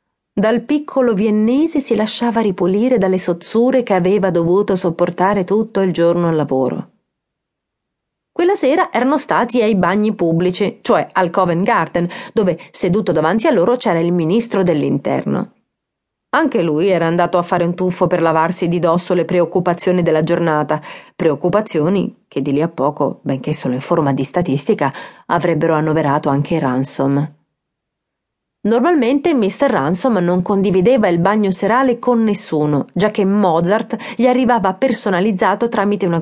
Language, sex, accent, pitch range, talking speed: Italian, female, native, 170-235 Hz, 145 wpm